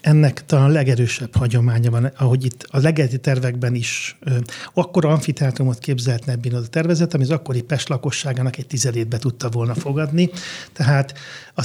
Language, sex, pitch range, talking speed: Hungarian, male, 130-155 Hz, 155 wpm